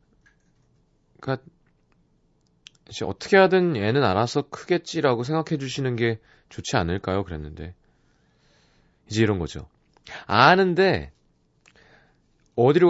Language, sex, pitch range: Korean, male, 90-145 Hz